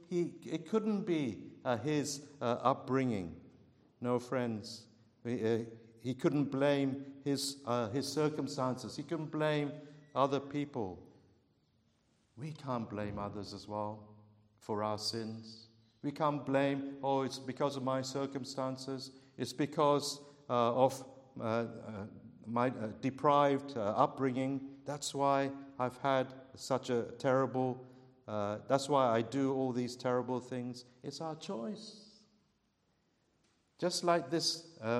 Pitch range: 120-145 Hz